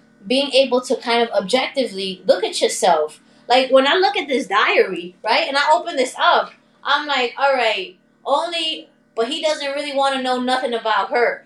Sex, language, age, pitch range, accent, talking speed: female, English, 20-39, 230-290 Hz, American, 195 wpm